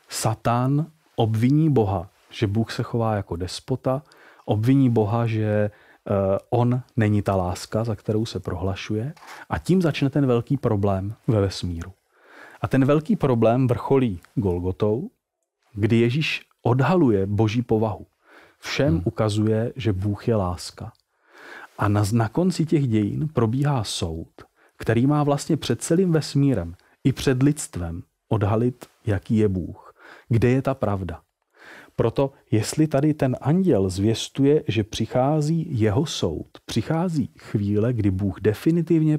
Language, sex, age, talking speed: Czech, male, 40-59, 130 wpm